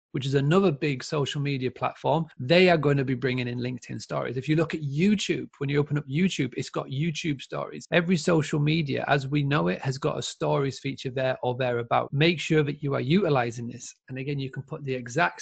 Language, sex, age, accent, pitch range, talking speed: English, male, 30-49, British, 140-165 Hz, 225 wpm